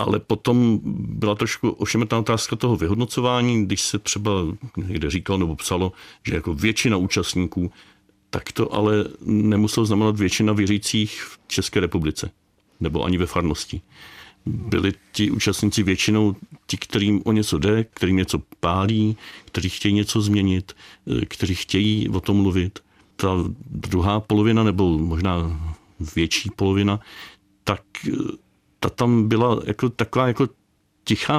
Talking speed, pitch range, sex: 130 wpm, 95-110 Hz, male